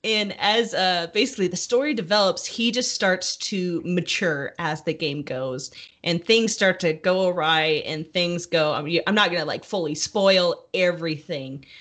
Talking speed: 170 wpm